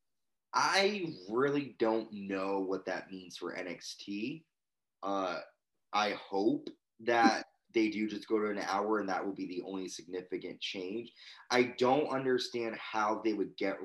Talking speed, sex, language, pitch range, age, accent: 150 wpm, male, English, 100-135 Hz, 20-39, American